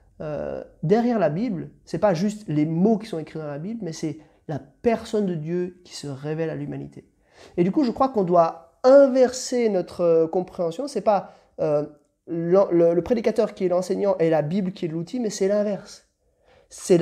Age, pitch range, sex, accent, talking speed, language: 30-49, 165-220 Hz, male, French, 200 wpm, French